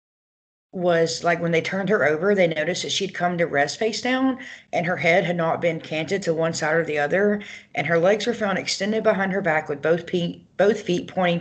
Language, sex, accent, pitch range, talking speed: English, female, American, 150-185 Hz, 230 wpm